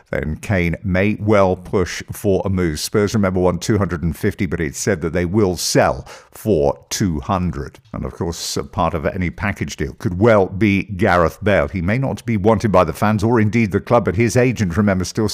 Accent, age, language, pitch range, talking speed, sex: British, 50-69, English, 90-110 Hz, 200 wpm, male